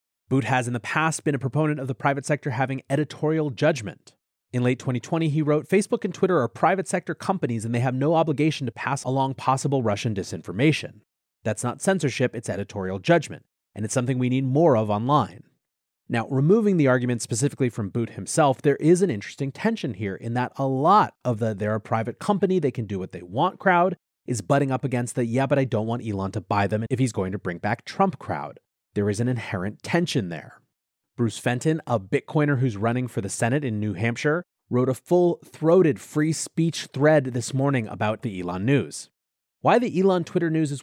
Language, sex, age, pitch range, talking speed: English, male, 30-49, 115-155 Hz, 205 wpm